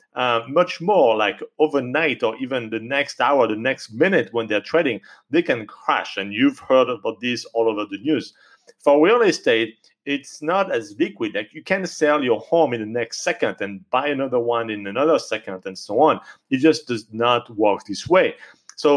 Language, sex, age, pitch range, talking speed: English, male, 40-59, 115-155 Hz, 200 wpm